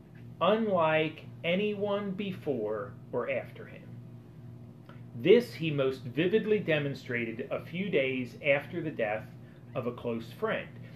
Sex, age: male, 40-59